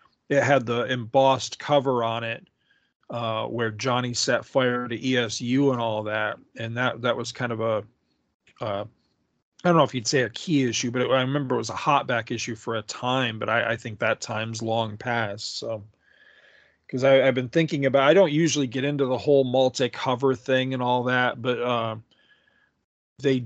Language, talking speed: English, 190 wpm